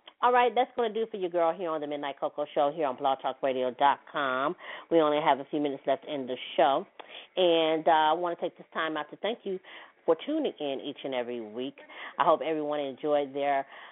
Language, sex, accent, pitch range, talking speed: English, female, American, 135-155 Hz, 225 wpm